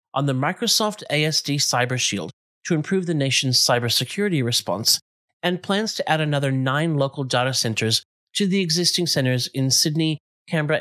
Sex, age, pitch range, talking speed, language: male, 30-49, 125-160 Hz, 155 wpm, English